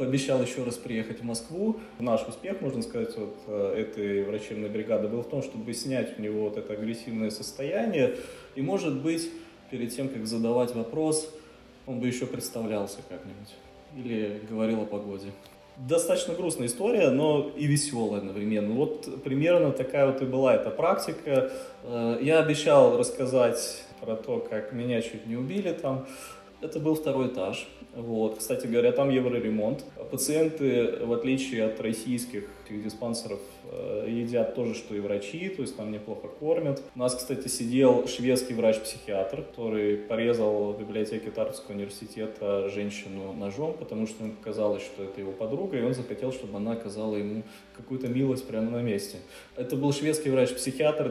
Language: Russian